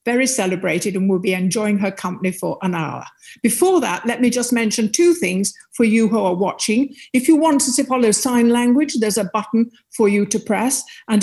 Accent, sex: British, female